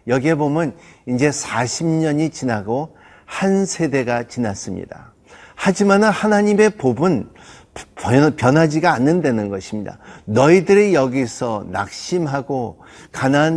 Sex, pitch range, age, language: male, 105-135 Hz, 50-69, Korean